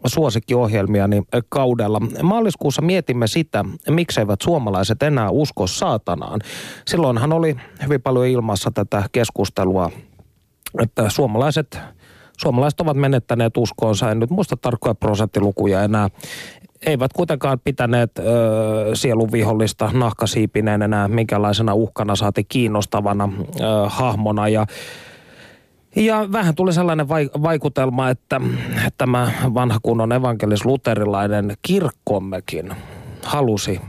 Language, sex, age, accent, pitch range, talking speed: Finnish, male, 30-49, native, 105-145 Hz, 95 wpm